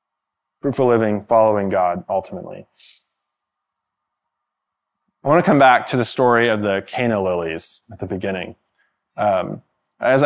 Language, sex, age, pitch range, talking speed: English, male, 20-39, 100-130 Hz, 130 wpm